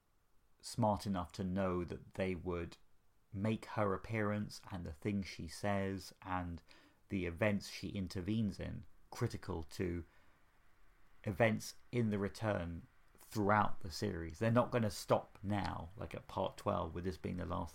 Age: 40-59